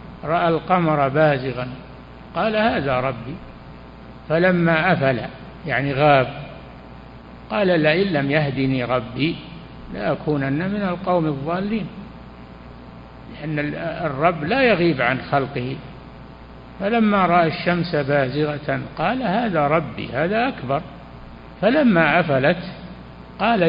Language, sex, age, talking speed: Arabic, male, 60-79, 95 wpm